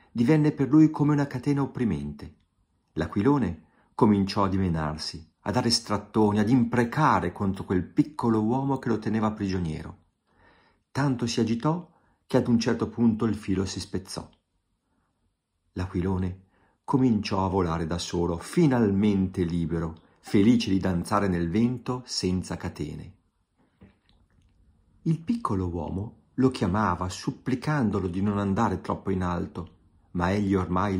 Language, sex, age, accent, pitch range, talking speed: Italian, male, 50-69, native, 85-125 Hz, 130 wpm